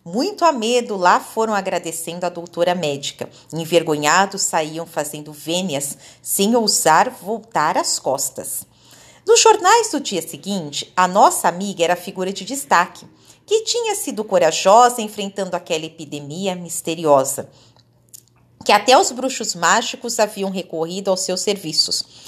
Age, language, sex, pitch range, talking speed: 40-59, Portuguese, female, 170-245 Hz, 130 wpm